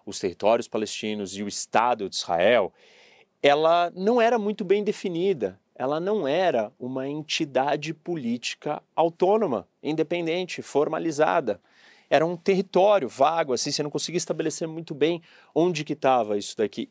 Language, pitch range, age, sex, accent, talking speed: Portuguese, 120-170 Hz, 30-49, male, Brazilian, 135 wpm